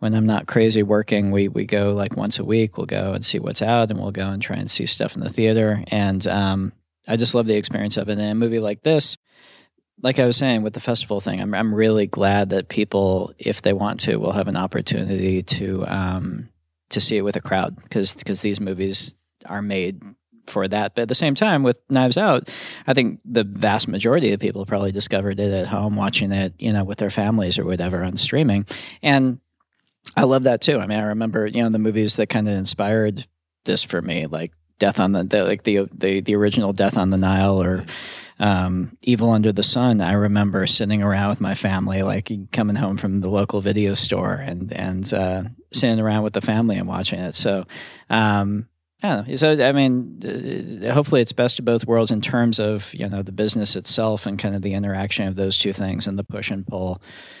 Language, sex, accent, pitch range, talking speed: English, male, American, 95-110 Hz, 220 wpm